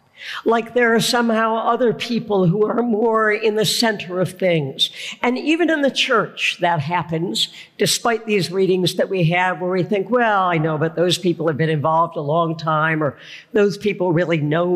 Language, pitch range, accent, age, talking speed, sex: English, 170-225 Hz, American, 60-79, 190 wpm, female